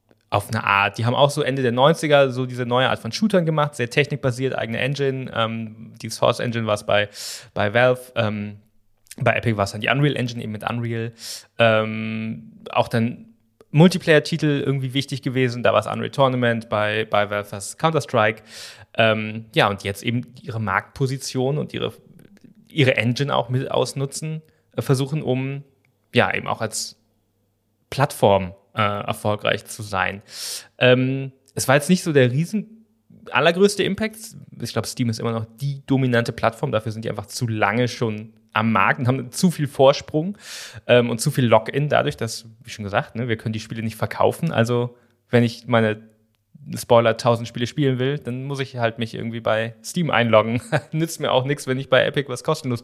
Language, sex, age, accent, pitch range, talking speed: German, male, 20-39, German, 115-145 Hz, 180 wpm